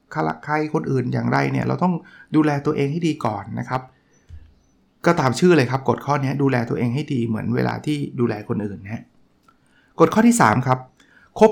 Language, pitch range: Thai, 125-155 Hz